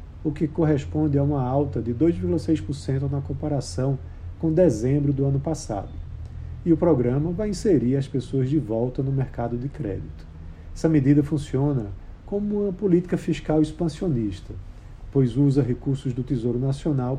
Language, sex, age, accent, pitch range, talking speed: Portuguese, male, 50-69, Brazilian, 120-155 Hz, 145 wpm